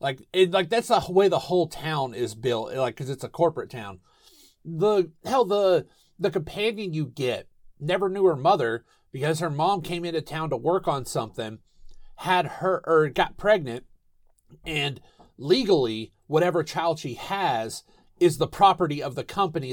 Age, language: 40-59, English